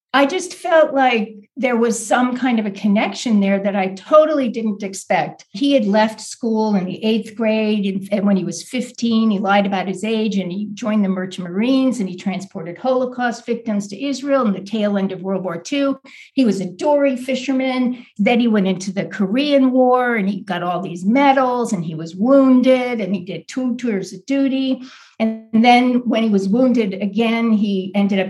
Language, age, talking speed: English, 60-79, 200 wpm